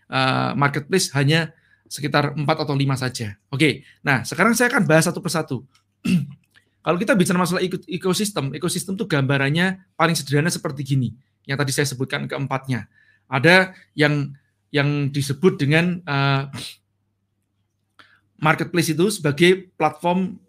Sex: male